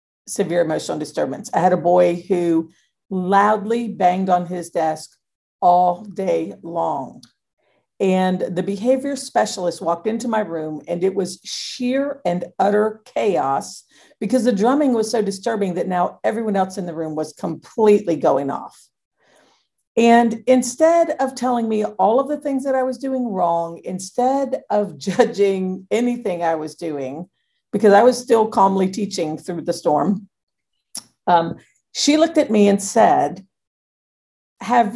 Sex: female